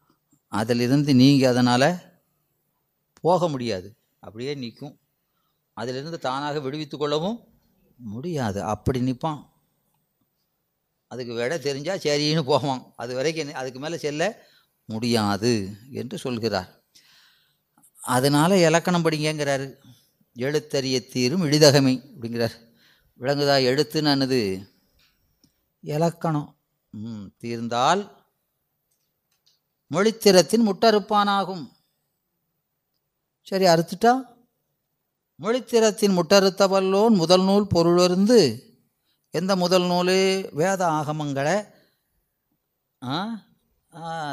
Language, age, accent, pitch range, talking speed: Tamil, 30-49, native, 130-180 Hz, 75 wpm